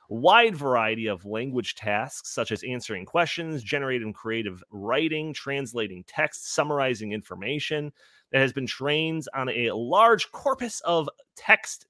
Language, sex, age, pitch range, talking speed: English, male, 30-49, 110-145 Hz, 130 wpm